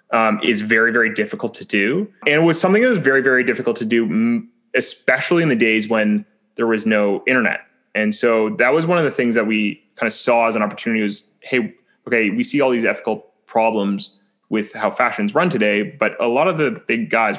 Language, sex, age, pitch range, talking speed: English, male, 20-39, 105-170 Hz, 220 wpm